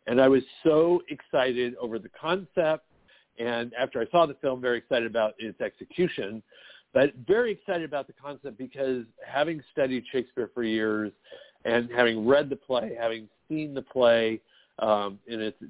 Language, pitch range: English, 110-135 Hz